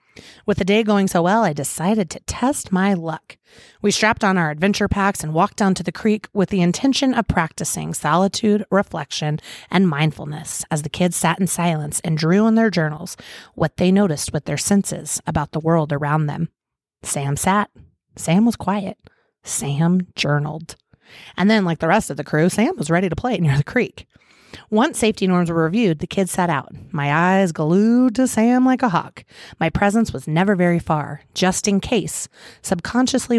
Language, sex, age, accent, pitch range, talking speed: English, female, 30-49, American, 155-205 Hz, 190 wpm